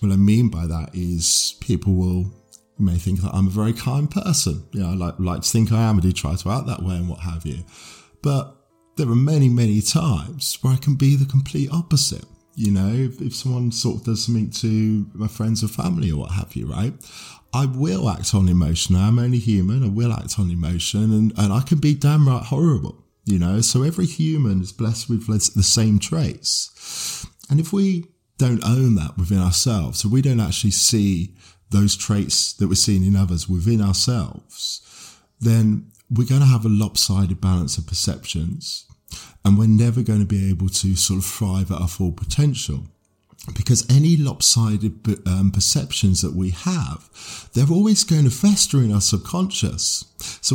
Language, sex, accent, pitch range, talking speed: English, male, British, 95-130 Hz, 195 wpm